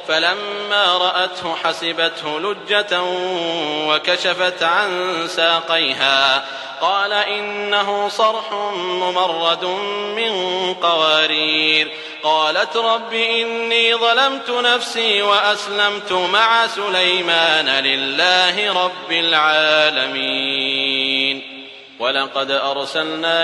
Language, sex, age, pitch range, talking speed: English, male, 30-49, 155-180 Hz, 65 wpm